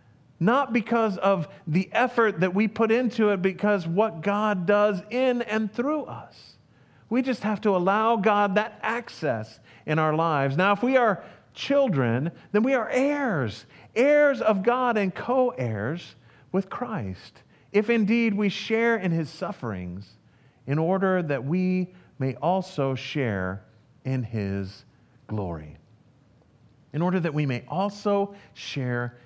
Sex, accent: male, American